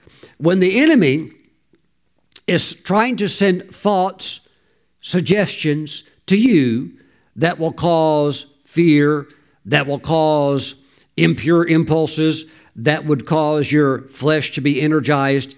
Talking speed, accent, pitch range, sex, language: 110 wpm, American, 150-205 Hz, male, English